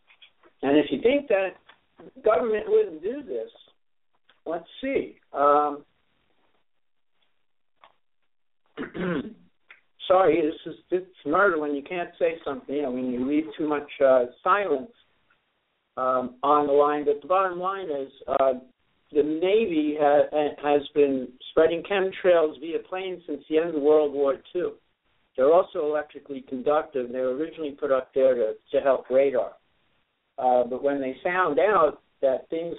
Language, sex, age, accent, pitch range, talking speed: English, male, 60-79, American, 135-175 Hz, 150 wpm